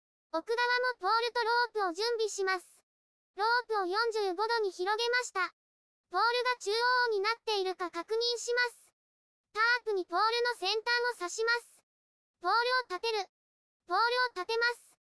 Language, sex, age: Japanese, male, 20-39